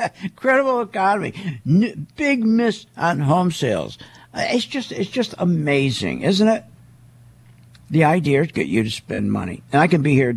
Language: English